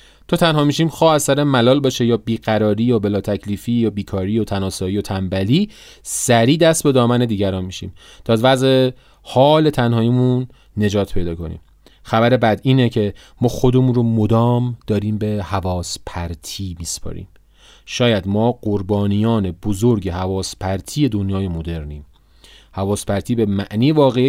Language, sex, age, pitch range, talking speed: Persian, male, 30-49, 90-120 Hz, 145 wpm